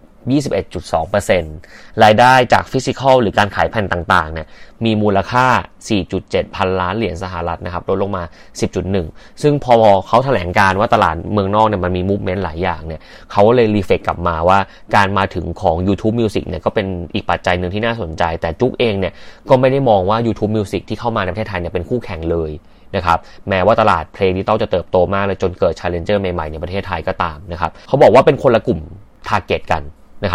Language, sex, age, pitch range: Thai, male, 20-39, 90-110 Hz